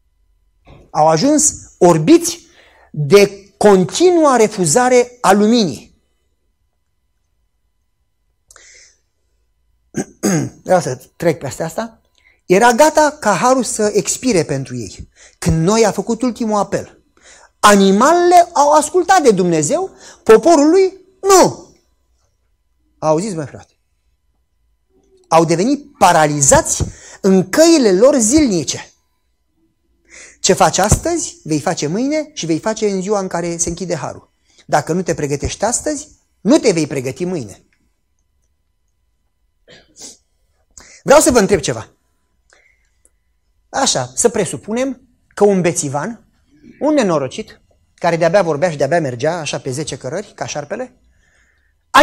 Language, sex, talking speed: Romanian, male, 110 wpm